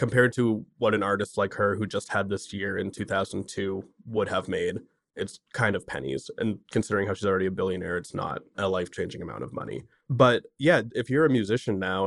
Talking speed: 215 wpm